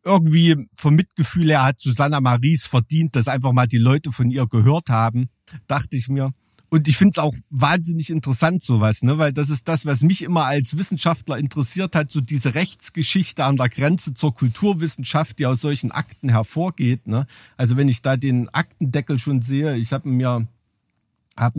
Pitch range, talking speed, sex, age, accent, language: 120-155 Hz, 185 wpm, male, 50-69, German, German